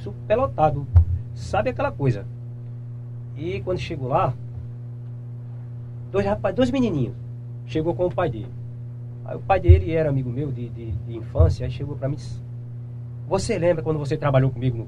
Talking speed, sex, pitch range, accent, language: 160 wpm, male, 120-140 Hz, Brazilian, Portuguese